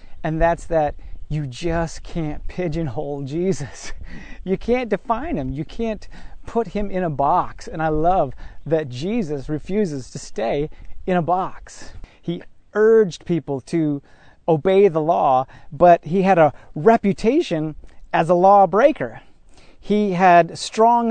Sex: male